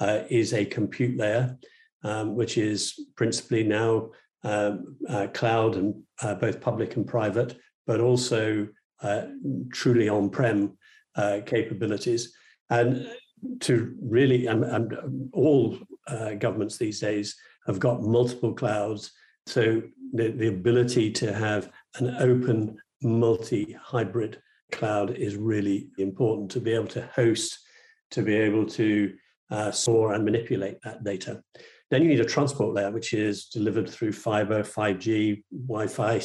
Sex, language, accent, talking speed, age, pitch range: male, English, British, 130 wpm, 50-69, 105-130 Hz